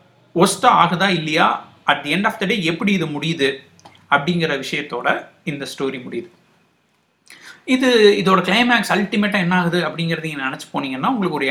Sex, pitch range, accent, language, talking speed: male, 155-205 Hz, native, Tamil, 145 wpm